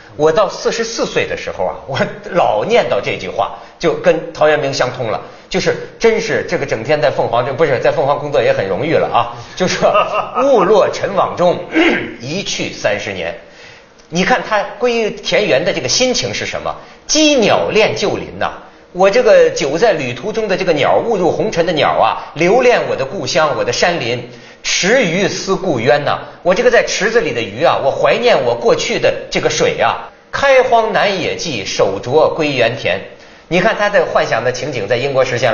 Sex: male